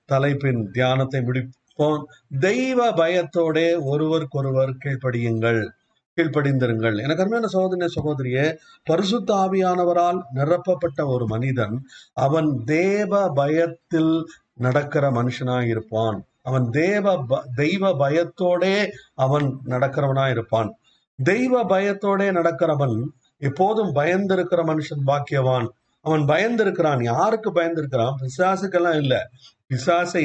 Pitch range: 130-175 Hz